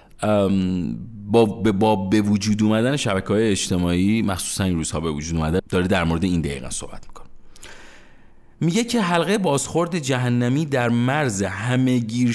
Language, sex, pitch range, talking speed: Persian, male, 95-135 Hz, 125 wpm